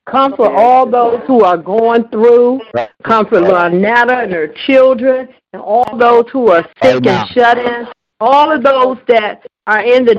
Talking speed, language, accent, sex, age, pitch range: 165 wpm, English, American, female, 60-79, 200-260 Hz